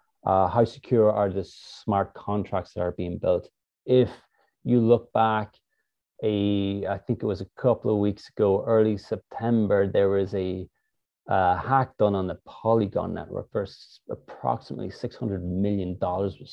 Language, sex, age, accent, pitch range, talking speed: English, male, 30-49, Irish, 100-120 Hz, 155 wpm